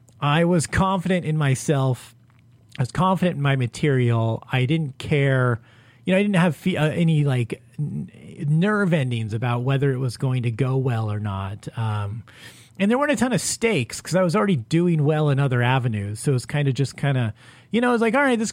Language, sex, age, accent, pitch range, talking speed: English, male, 30-49, American, 120-165 Hz, 215 wpm